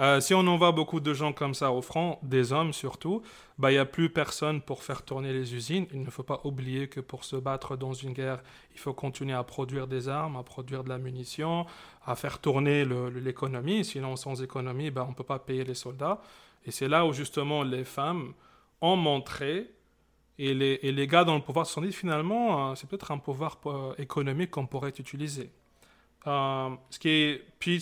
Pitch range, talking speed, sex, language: 130-150 Hz, 215 wpm, male, French